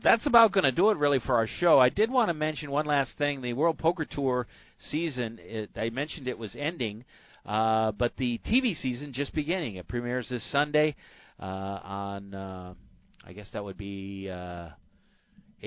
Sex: male